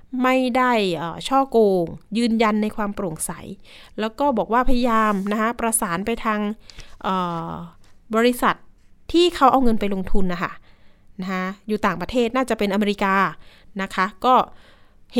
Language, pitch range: Thai, 195-250 Hz